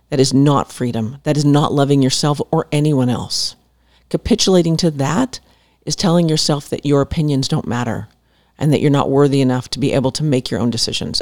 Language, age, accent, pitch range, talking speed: English, 40-59, American, 125-160 Hz, 195 wpm